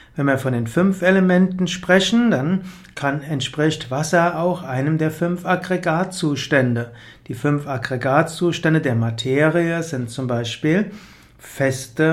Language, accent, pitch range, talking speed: German, German, 130-175 Hz, 125 wpm